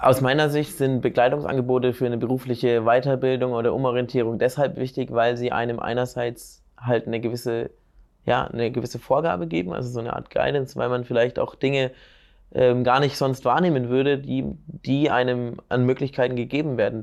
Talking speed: 170 wpm